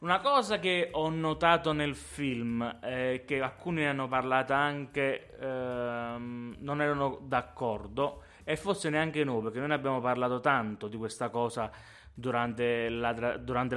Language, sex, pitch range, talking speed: Italian, male, 120-150 Hz, 145 wpm